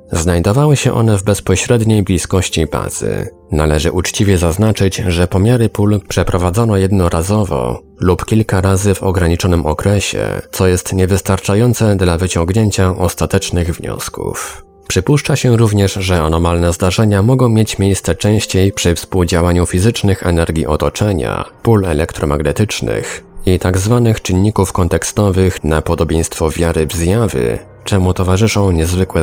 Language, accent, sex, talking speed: Polish, native, male, 115 wpm